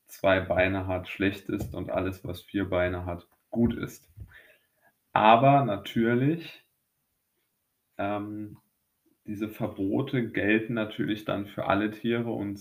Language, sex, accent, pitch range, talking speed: German, male, German, 95-115 Hz, 120 wpm